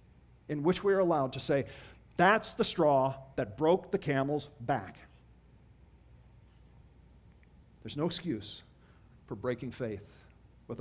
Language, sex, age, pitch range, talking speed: English, male, 50-69, 115-170 Hz, 120 wpm